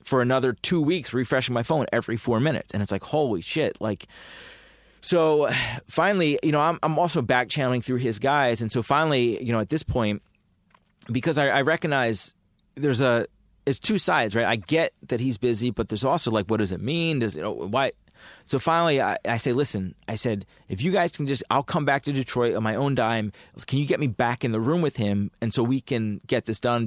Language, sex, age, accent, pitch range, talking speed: English, male, 30-49, American, 110-140 Hz, 230 wpm